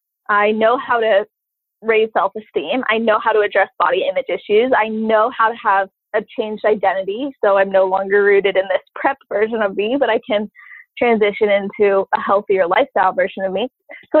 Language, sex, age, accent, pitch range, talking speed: English, female, 20-39, American, 200-255 Hz, 190 wpm